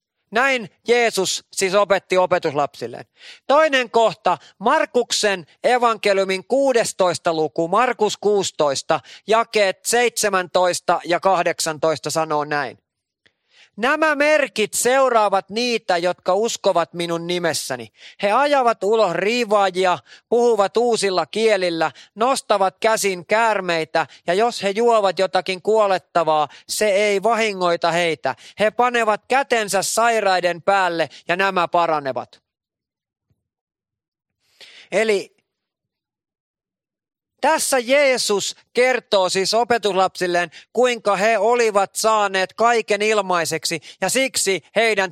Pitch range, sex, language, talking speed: 175-215 Hz, male, Finnish, 95 wpm